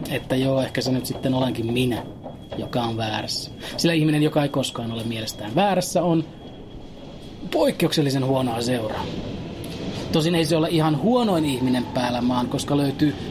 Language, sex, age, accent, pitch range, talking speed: Finnish, male, 30-49, native, 130-170 Hz, 155 wpm